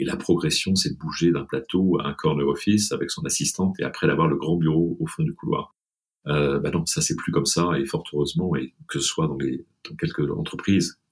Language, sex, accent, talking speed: French, male, French, 235 wpm